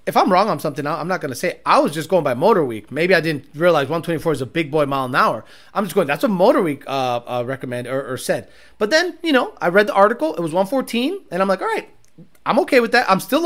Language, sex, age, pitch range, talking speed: English, male, 30-49, 175-255 Hz, 270 wpm